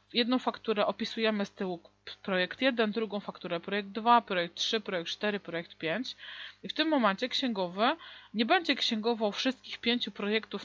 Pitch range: 205-245 Hz